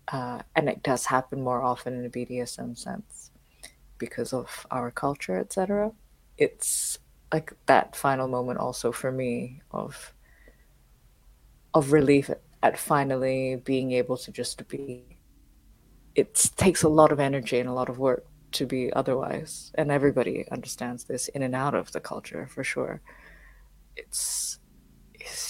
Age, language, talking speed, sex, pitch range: 20-39, English, 145 wpm, female, 125-145 Hz